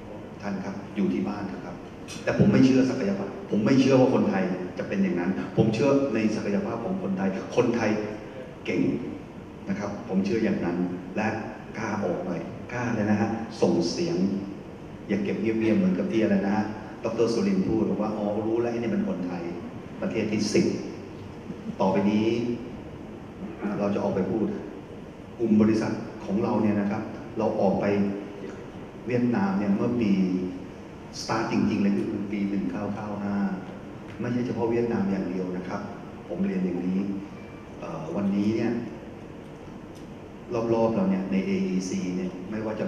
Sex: male